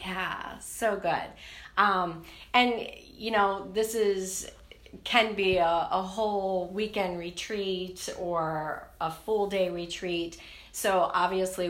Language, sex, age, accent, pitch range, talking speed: English, female, 40-59, American, 170-205 Hz, 120 wpm